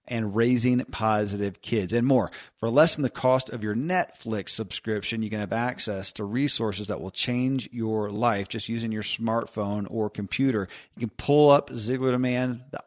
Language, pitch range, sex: English, 110-135 Hz, male